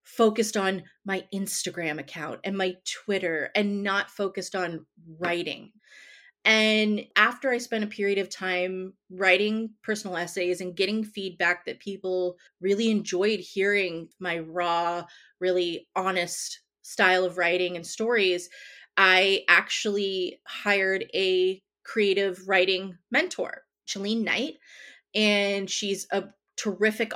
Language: English